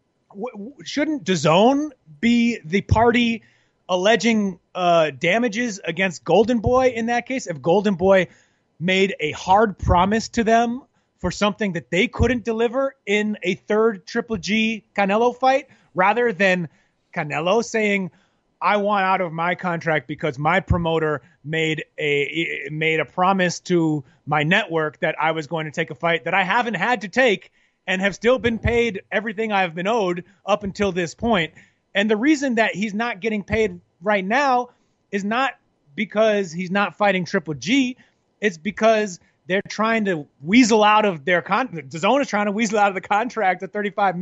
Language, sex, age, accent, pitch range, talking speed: English, male, 30-49, American, 175-230 Hz, 165 wpm